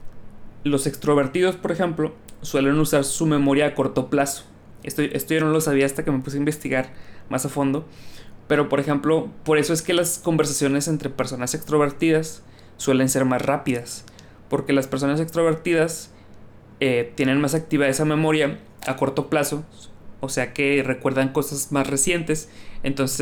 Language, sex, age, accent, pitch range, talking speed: Spanish, male, 20-39, Mexican, 125-155 Hz, 165 wpm